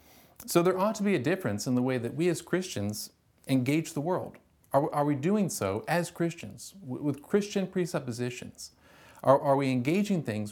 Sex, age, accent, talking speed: male, 40-59, American, 185 wpm